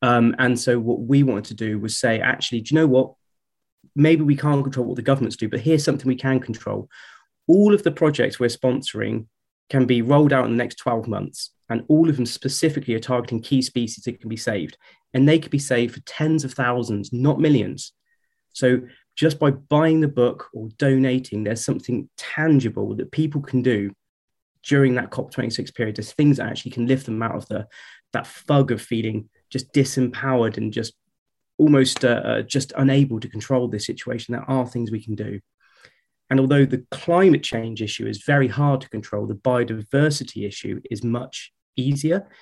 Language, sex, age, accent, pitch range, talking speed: English, male, 20-39, British, 115-135 Hz, 195 wpm